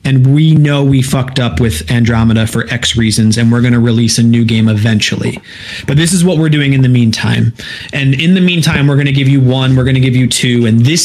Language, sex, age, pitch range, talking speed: English, male, 30-49, 120-150 Hz, 255 wpm